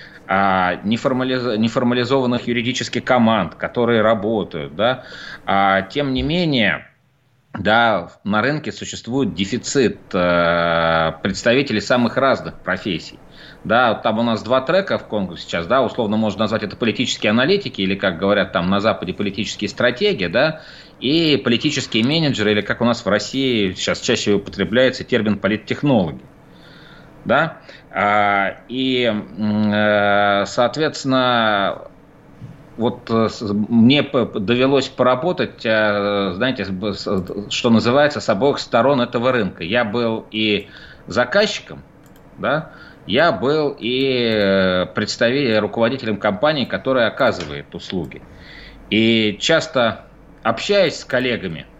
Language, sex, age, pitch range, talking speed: Russian, male, 30-49, 100-130 Hz, 105 wpm